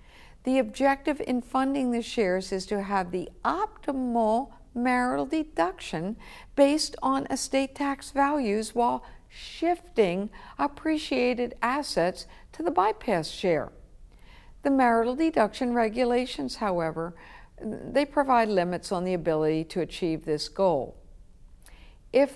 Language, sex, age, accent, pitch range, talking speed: English, female, 60-79, American, 180-255 Hz, 115 wpm